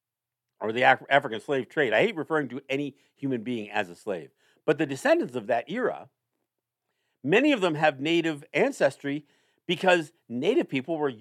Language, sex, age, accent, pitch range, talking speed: English, male, 50-69, American, 145-240 Hz, 165 wpm